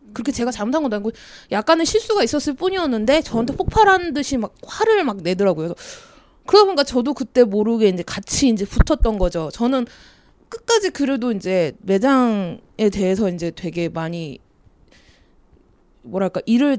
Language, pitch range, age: Korean, 210-330 Hz, 20-39